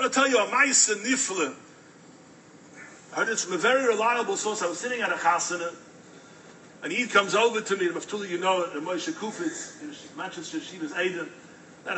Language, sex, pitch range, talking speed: English, male, 180-250 Hz, 200 wpm